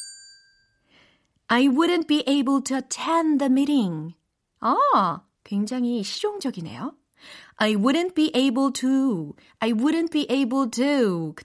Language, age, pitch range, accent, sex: Korean, 40-59, 215-350 Hz, native, female